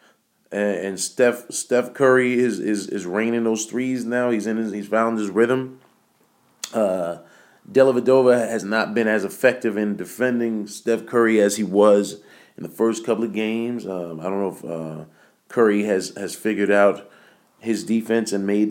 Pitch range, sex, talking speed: 100-125 Hz, male, 175 wpm